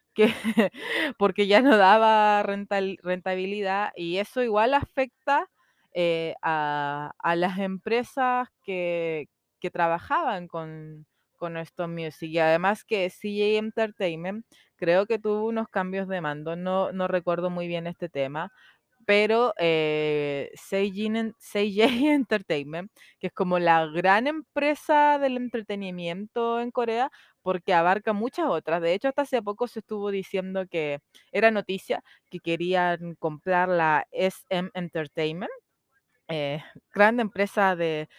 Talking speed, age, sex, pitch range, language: 130 wpm, 20-39, female, 170-225 Hz, Spanish